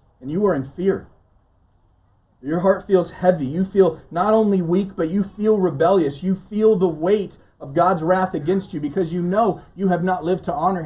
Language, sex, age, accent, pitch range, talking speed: English, male, 30-49, American, 115-185 Hz, 200 wpm